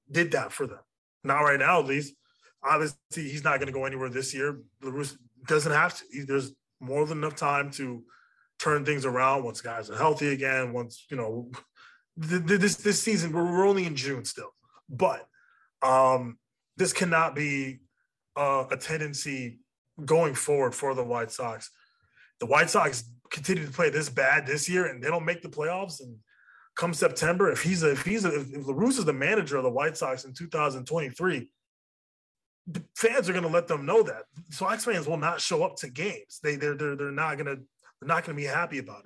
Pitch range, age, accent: 135-175 Hz, 20-39, American